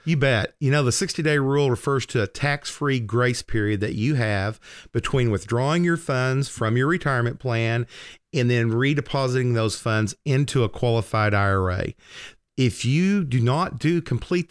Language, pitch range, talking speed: English, 105-130 Hz, 160 wpm